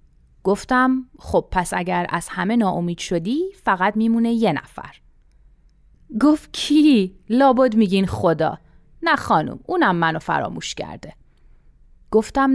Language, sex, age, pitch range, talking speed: Persian, female, 30-49, 170-255 Hz, 115 wpm